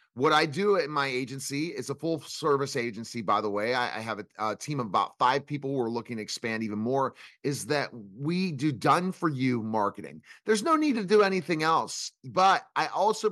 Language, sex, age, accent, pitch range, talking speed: English, male, 30-49, American, 125-165 Hz, 220 wpm